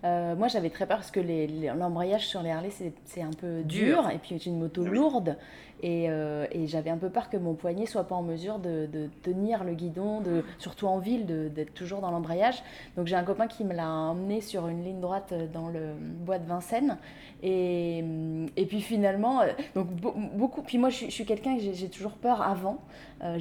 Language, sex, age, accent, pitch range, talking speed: French, female, 20-39, French, 175-240 Hz, 225 wpm